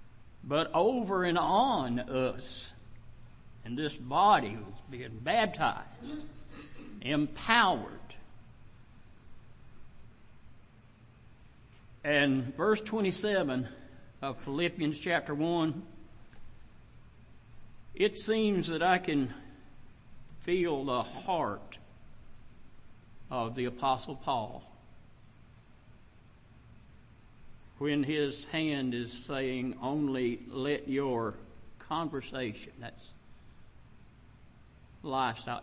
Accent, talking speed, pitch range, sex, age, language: American, 70 wpm, 115-155 Hz, male, 60-79, English